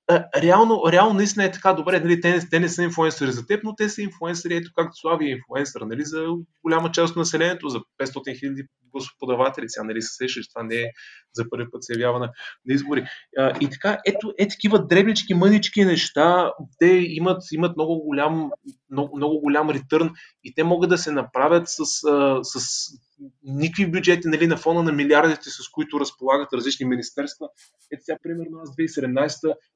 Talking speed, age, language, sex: 180 wpm, 20-39, Bulgarian, male